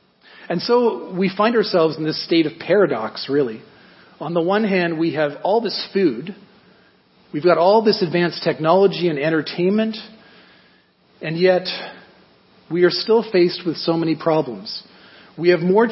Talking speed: 155 wpm